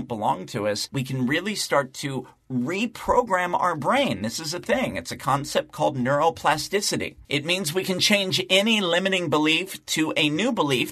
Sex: male